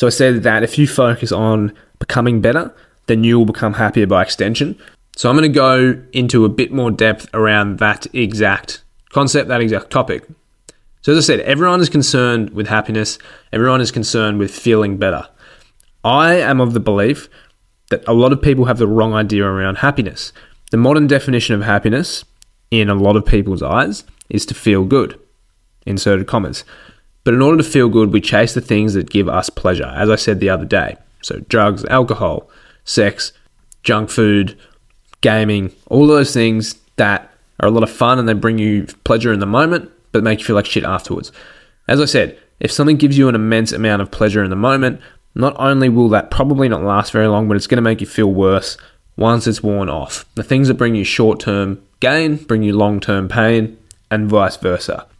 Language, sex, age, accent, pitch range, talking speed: English, male, 20-39, Australian, 105-125 Hz, 200 wpm